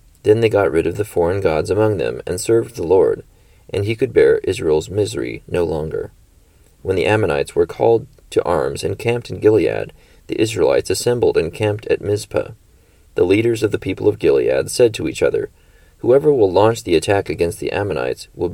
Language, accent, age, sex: English, American, 30-49, male